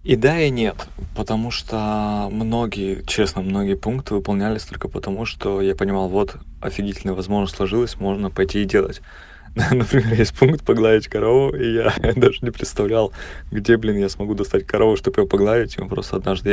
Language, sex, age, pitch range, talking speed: Russian, male, 20-39, 95-110 Hz, 175 wpm